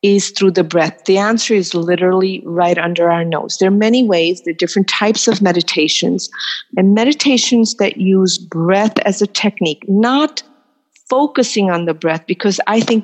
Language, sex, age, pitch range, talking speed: English, female, 50-69, 185-220 Hz, 175 wpm